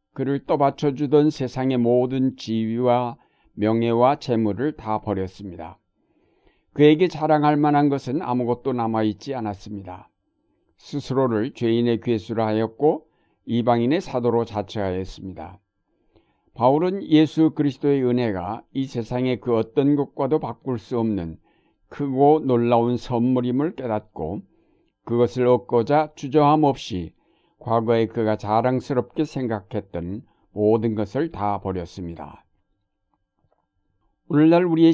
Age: 60-79